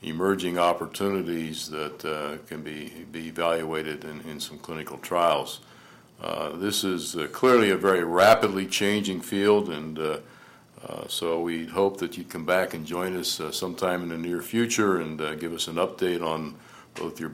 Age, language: 60-79, English